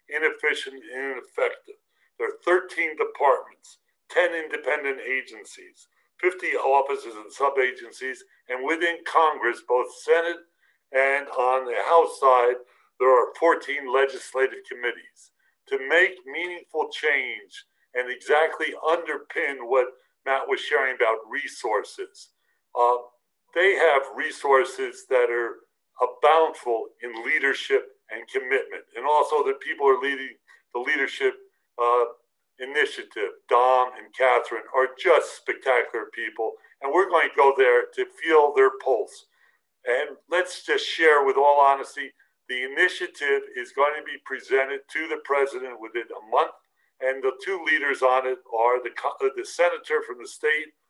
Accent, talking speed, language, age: American, 135 wpm, English, 60-79